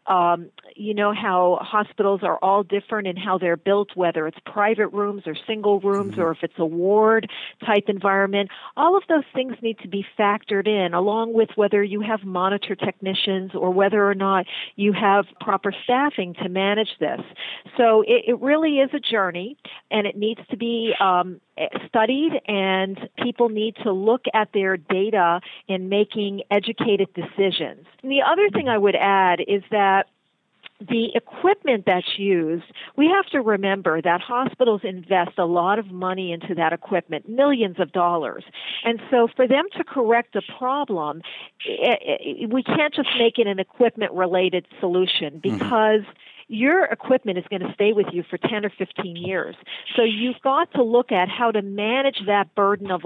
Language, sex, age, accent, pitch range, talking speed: English, female, 50-69, American, 185-230 Hz, 170 wpm